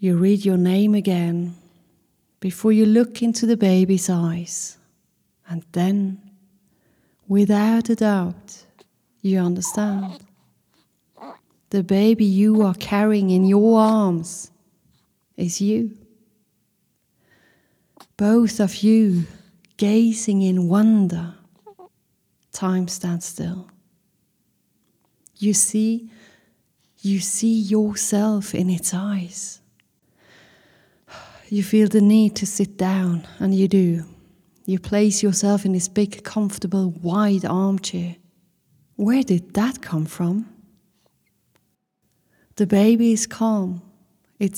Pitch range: 180-210 Hz